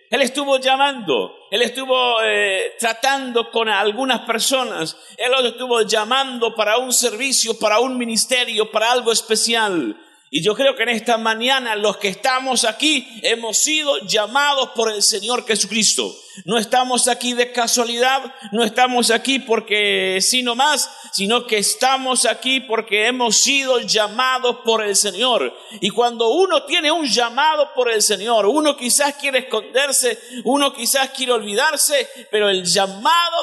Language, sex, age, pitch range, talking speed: Spanish, male, 50-69, 185-255 Hz, 150 wpm